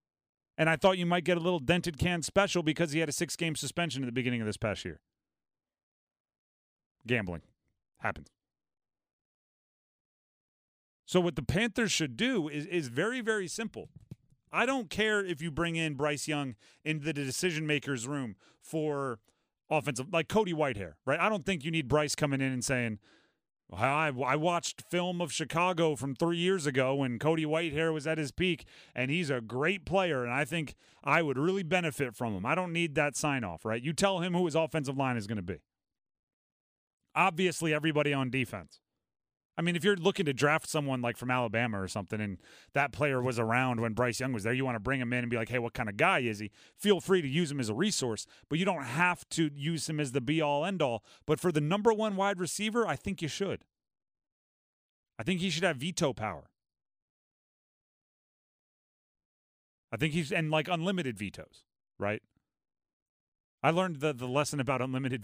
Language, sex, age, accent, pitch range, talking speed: English, male, 40-59, American, 125-175 Hz, 195 wpm